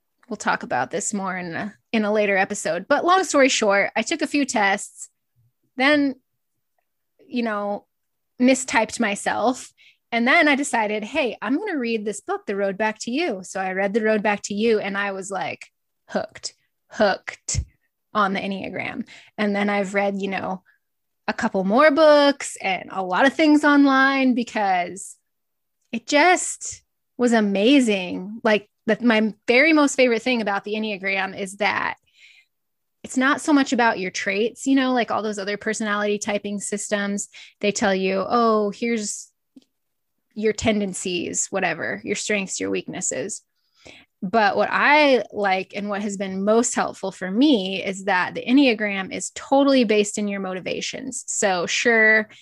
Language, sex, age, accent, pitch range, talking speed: English, female, 20-39, American, 200-255 Hz, 165 wpm